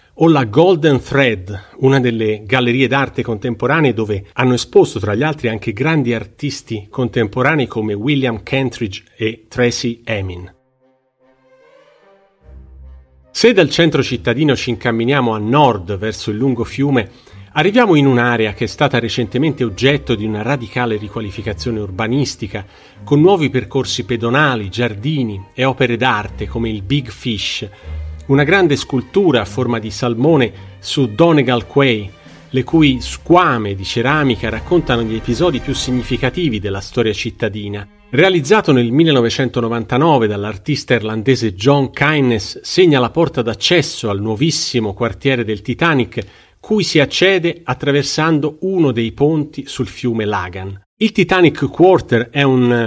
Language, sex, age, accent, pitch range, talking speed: Italian, male, 40-59, native, 110-140 Hz, 130 wpm